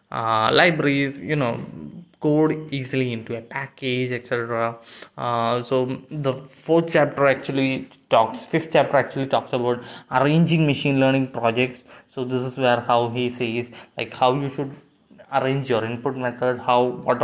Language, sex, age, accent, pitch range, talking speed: Malayalam, male, 20-39, native, 120-135 Hz, 150 wpm